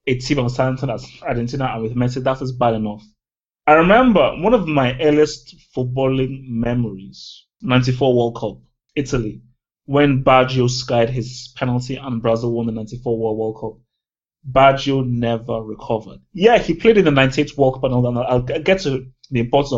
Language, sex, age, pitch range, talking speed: English, male, 20-39, 120-150 Hz, 160 wpm